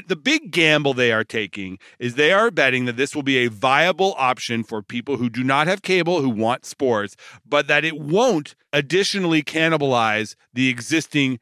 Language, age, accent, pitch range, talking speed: English, 40-59, American, 130-180 Hz, 185 wpm